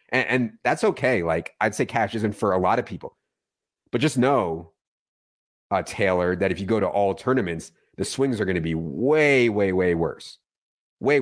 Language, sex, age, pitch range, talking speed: English, male, 30-49, 90-110 Hz, 195 wpm